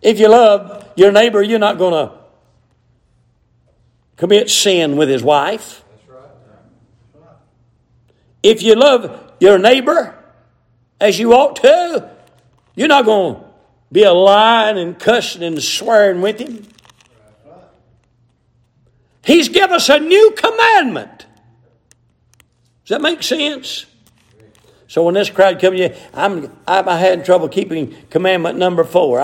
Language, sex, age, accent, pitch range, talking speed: English, male, 60-79, American, 120-195 Hz, 125 wpm